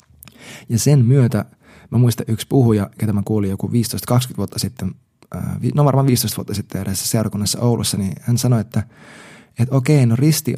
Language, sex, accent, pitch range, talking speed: Finnish, male, native, 100-125 Hz, 170 wpm